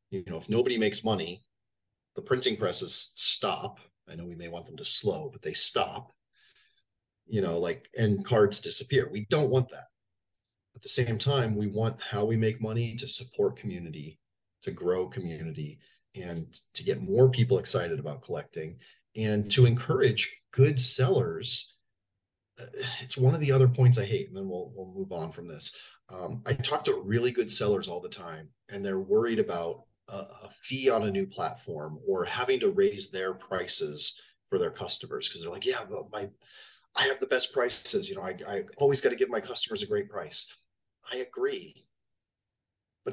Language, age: English, 30-49